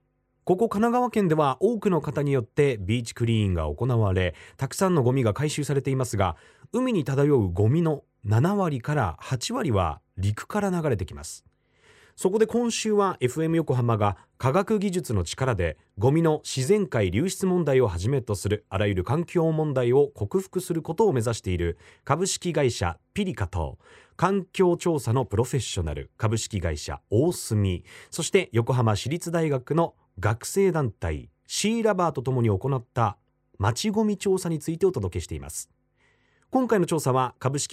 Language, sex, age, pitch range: Japanese, male, 30-49, 105-170 Hz